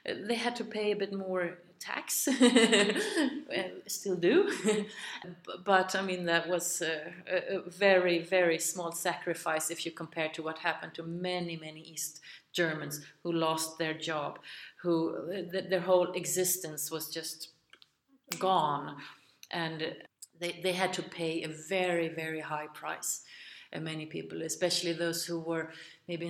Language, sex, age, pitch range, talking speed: English, female, 30-49, 175-215 Hz, 140 wpm